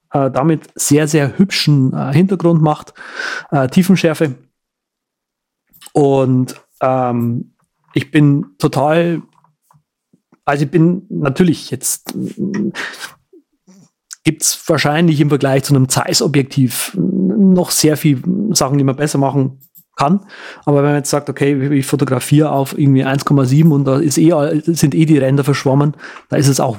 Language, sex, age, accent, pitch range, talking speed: German, male, 30-49, German, 140-165 Hz, 140 wpm